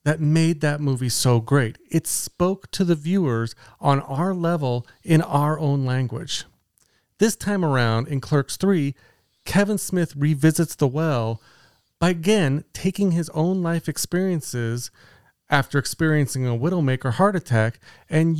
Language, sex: English, male